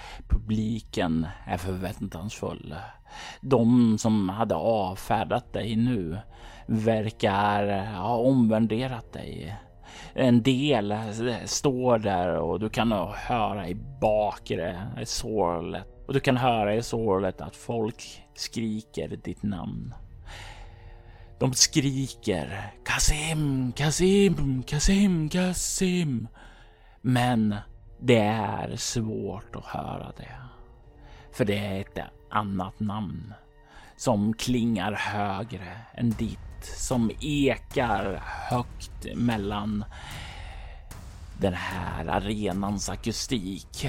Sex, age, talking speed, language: male, 30-49, 95 wpm, Swedish